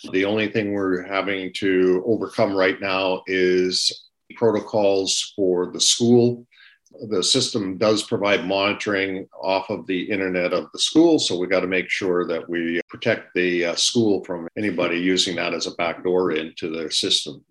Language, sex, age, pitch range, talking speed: English, male, 50-69, 95-120 Hz, 165 wpm